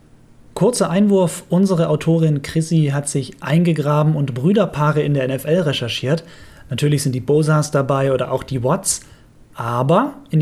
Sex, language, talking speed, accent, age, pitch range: male, German, 145 wpm, German, 30-49, 140-180 Hz